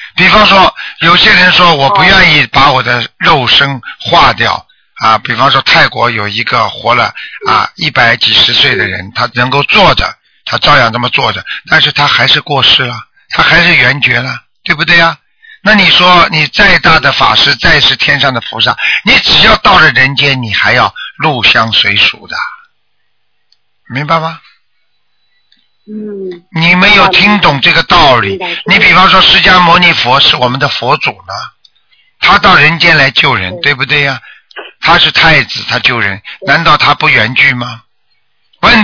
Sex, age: male, 50-69